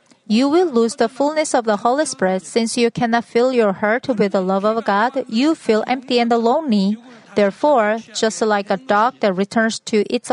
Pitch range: 215-255 Hz